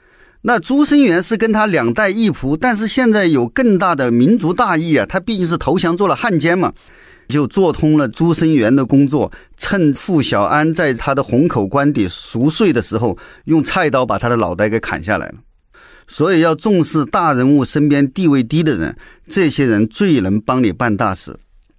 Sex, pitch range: male, 135-190 Hz